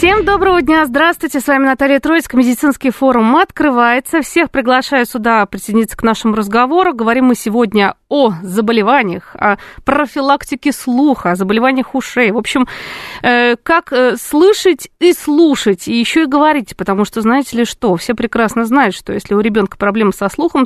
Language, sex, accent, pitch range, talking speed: Russian, female, native, 215-285 Hz, 155 wpm